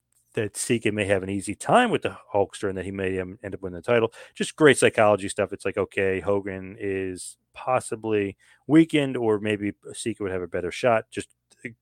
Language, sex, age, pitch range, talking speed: English, male, 30-49, 95-110 Hz, 205 wpm